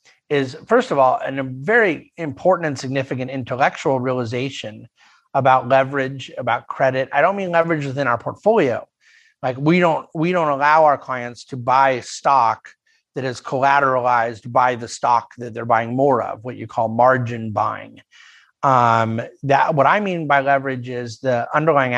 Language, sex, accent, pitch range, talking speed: English, male, American, 120-145 Hz, 165 wpm